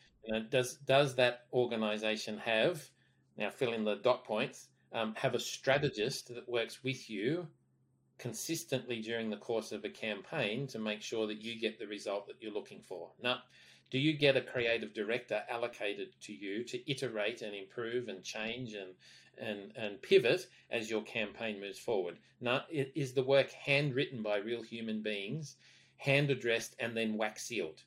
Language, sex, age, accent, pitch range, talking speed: English, male, 40-59, Australian, 110-135 Hz, 170 wpm